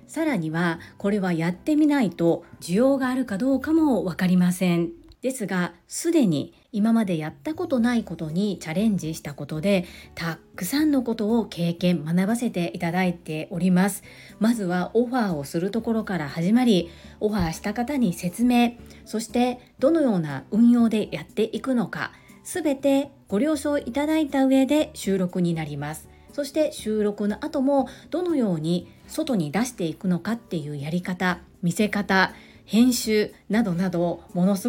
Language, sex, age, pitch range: Japanese, female, 40-59, 170-250 Hz